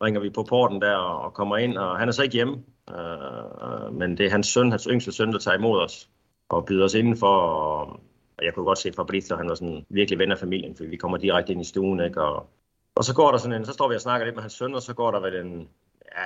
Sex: male